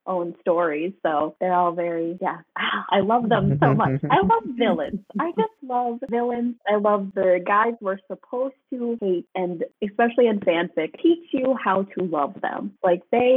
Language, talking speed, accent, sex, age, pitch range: English, 175 wpm, American, female, 20-39, 170-205 Hz